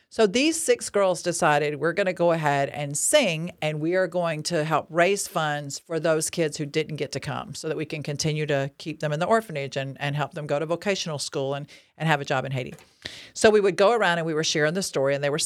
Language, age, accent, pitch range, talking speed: English, 50-69, American, 150-185 Hz, 265 wpm